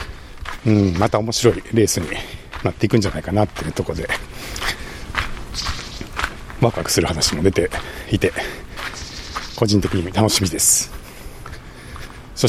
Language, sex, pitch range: Japanese, male, 70-115 Hz